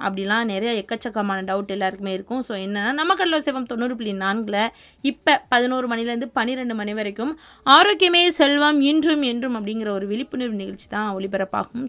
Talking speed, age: 140 wpm, 20-39